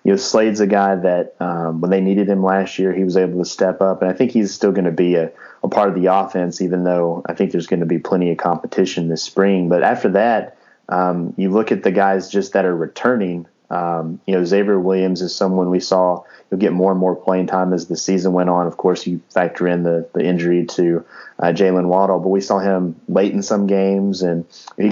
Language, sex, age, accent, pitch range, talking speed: English, male, 20-39, American, 90-95 Hz, 245 wpm